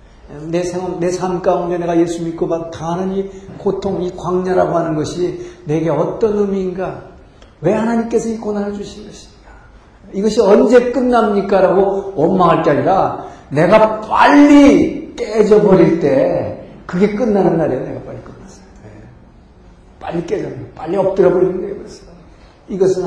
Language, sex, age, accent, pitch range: Korean, male, 50-69, native, 145-195 Hz